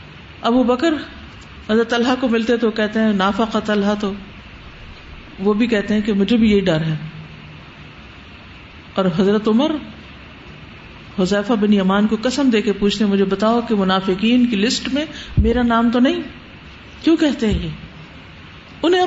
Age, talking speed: 50-69, 155 wpm